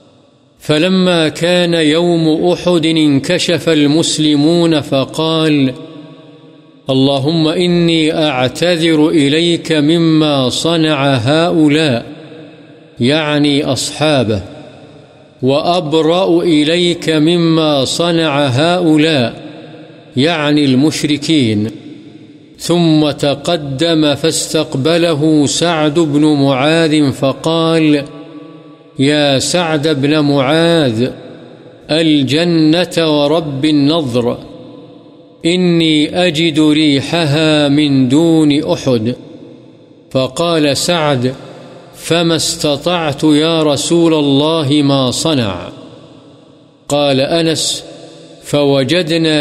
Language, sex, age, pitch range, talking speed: Urdu, male, 50-69, 145-165 Hz, 65 wpm